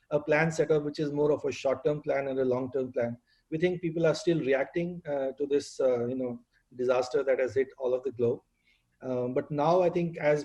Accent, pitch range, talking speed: Indian, 125-150 Hz, 235 wpm